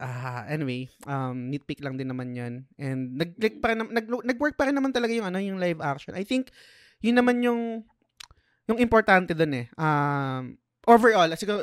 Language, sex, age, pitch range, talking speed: Filipino, male, 20-39, 130-180 Hz, 175 wpm